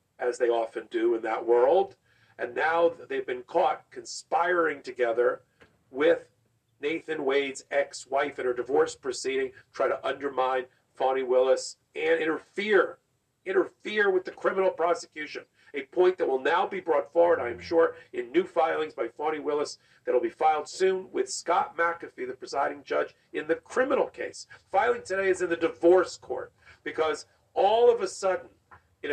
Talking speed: 160 wpm